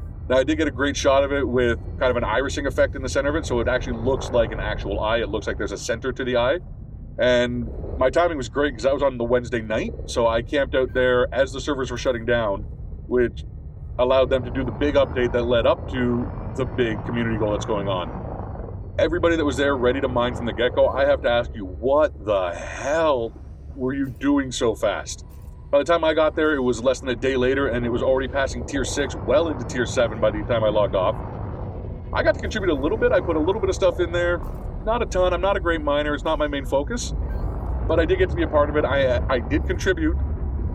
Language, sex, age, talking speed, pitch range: English, male, 40-59, 260 wpm, 105-140 Hz